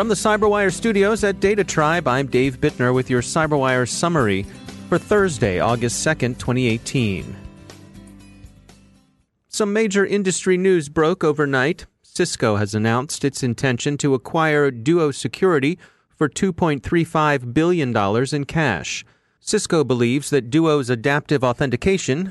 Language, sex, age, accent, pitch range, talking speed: English, male, 40-59, American, 125-155 Hz, 120 wpm